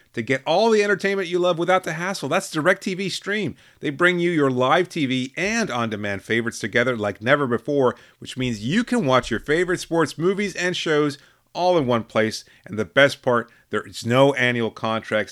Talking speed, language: 205 wpm, English